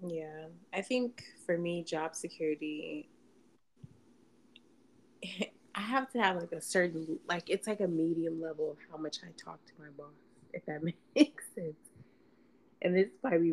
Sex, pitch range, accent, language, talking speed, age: female, 155-175 Hz, American, English, 160 wpm, 20-39